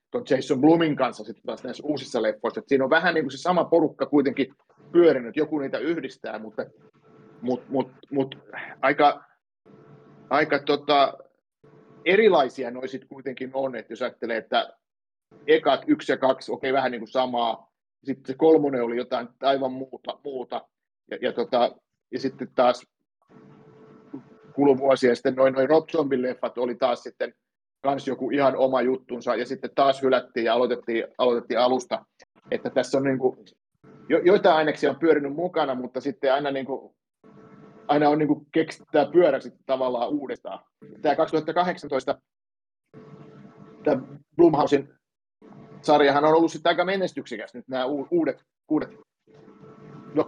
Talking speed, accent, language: 140 wpm, native, Finnish